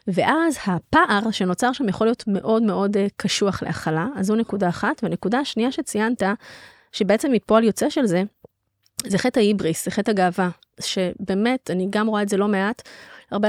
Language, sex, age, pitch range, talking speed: Hebrew, female, 20-39, 195-240 Hz, 165 wpm